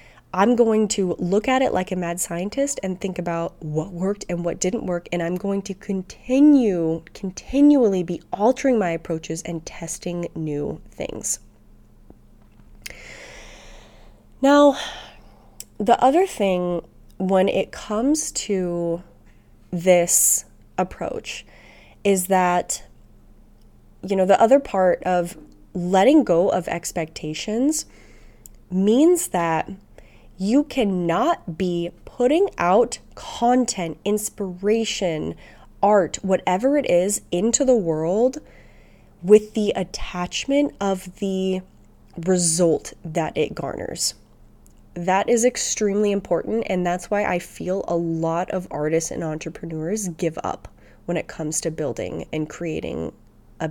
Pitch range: 165-210 Hz